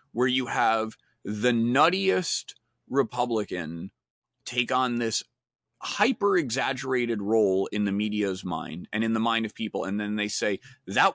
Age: 30-49